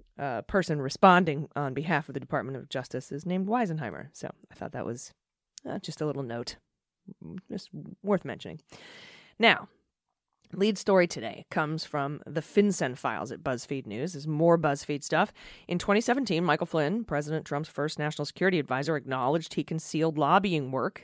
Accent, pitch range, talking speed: American, 150-185 Hz, 170 wpm